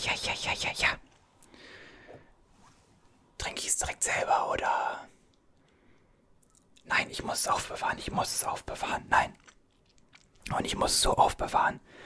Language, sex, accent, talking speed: German, male, German, 135 wpm